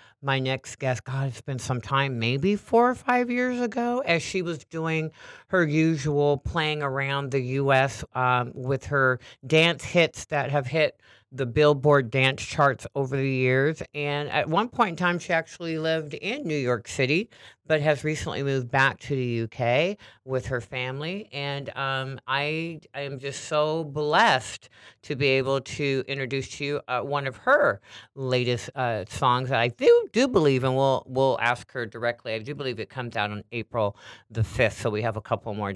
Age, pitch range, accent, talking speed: 40-59, 125-155 Hz, American, 190 wpm